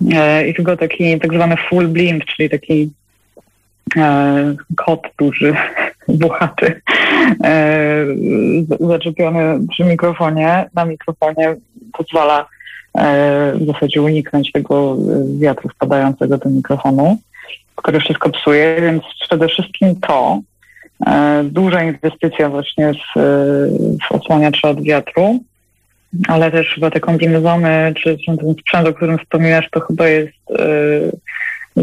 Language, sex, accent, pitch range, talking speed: Polish, female, native, 150-170 Hz, 110 wpm